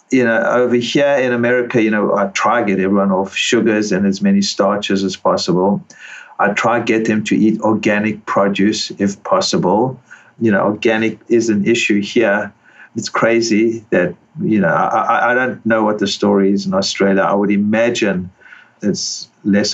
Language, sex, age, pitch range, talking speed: English, male, 50-69, 100-115 Hz, 180 wpm